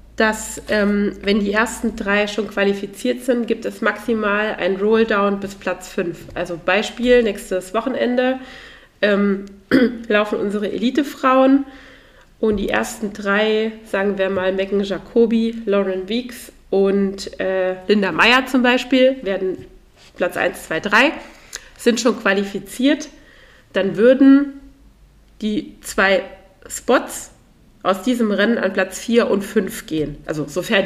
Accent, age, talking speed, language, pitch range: German, 30-49, 130 wpm, German, 190-235 Hz